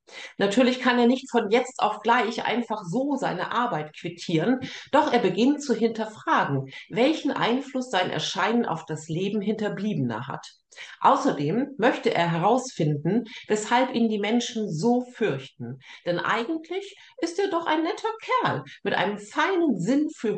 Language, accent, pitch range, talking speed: German, German, 165-255 Hz, 145 wpm